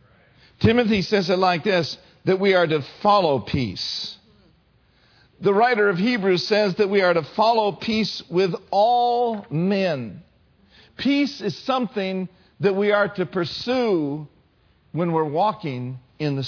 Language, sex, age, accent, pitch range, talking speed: English, male, 50-69, American, 145-220 Hz, 140 wpm